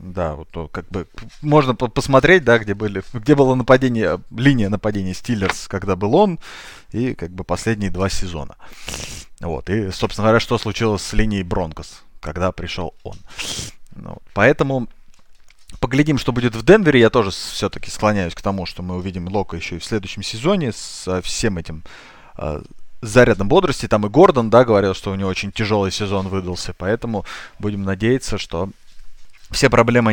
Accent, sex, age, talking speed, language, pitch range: native, male, 20-39, 165 wpm, Russian, 90-115 Hz